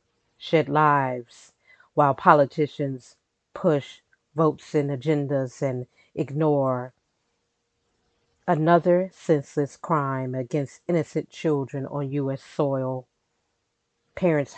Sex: female